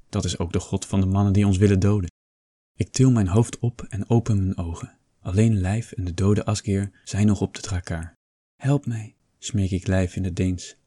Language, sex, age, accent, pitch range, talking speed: Dutch, male, 20-39, Dutch, 95-115 Hz, 220 wpm